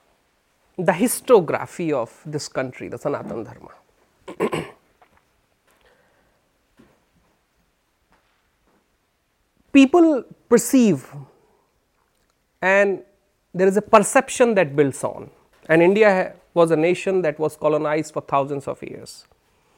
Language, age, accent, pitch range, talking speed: Hindi, 30-49, native, 165-235 Hz, 90 wpm